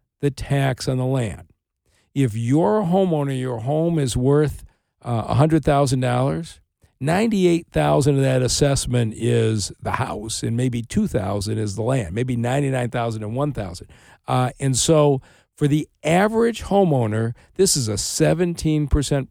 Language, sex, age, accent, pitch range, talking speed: English, male, 50-69, American, 120-155 Hz, 145 wpm